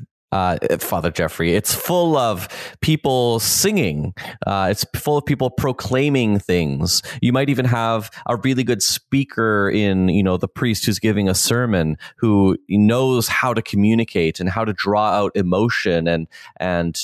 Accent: American